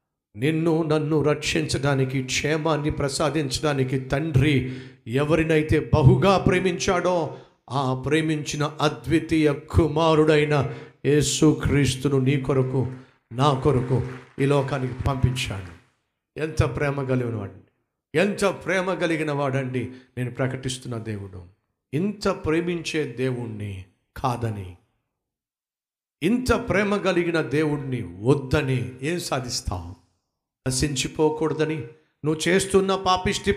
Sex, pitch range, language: male, 125-160 Hz, Telugu